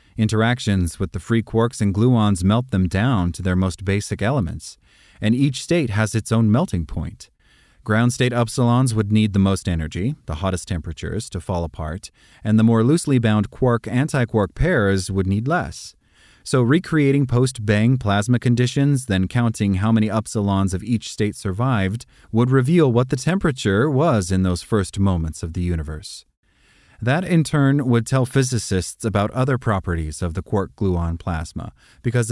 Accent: American